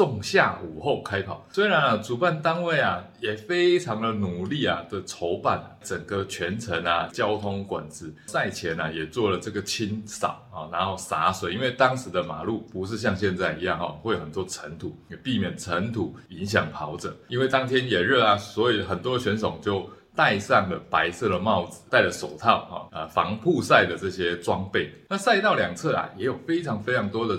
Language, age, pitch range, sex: Chinese, 20-39, 95-135 Hz, male